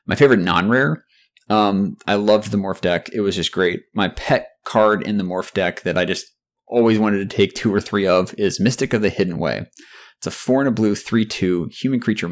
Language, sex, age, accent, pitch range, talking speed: English, male, 20-39, American, 100-125 Hz, 235 wpm